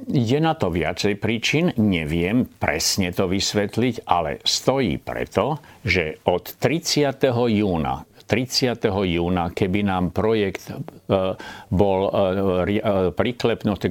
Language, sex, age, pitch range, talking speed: Slovak, male, 50-69, 90-110 Hz, 100 wpm